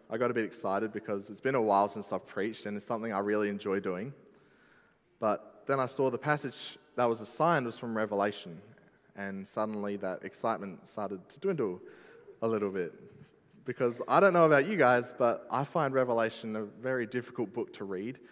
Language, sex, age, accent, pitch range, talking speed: English, male, 20-39, Australian, 105-125 Hz, 195 wpm